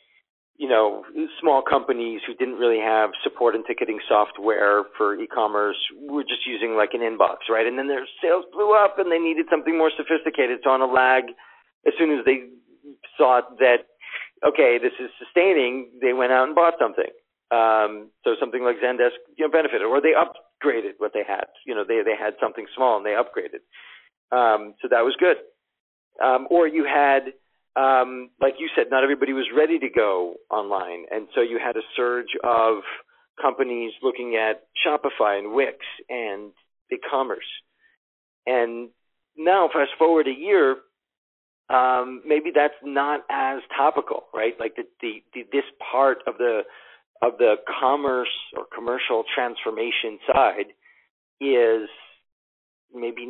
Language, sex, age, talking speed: English, male, 40-59, 160 wpm